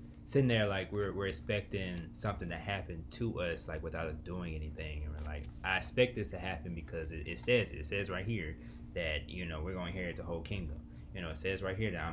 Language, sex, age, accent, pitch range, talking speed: English, male, 20-39, American, 80-100 Hz, 240 wpm